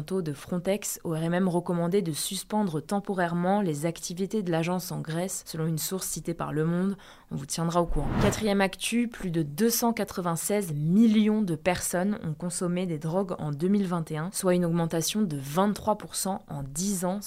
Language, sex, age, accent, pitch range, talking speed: French, female, 20-39, French, 160-195 Hz, 165 wpm